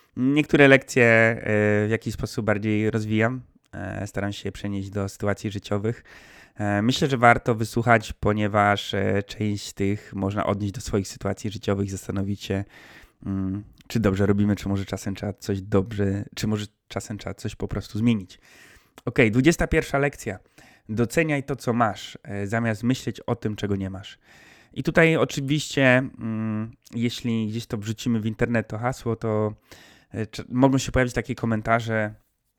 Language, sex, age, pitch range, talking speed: Polish, male, 20-39, 105-120 Hz, 140 wpm